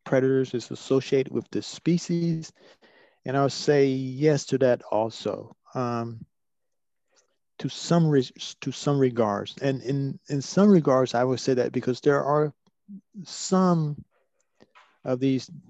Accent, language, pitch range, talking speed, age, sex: American, English, 120-150 Hz, 135 wpm, 40-59, male